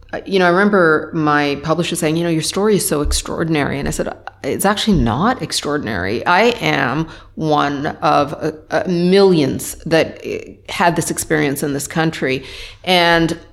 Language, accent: English, American